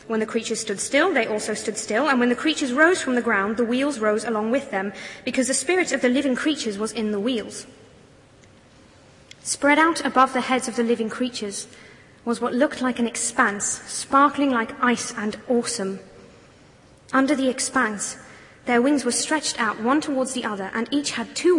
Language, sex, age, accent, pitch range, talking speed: English, female, 30-49, British, 225-270 Hz, 195 wpm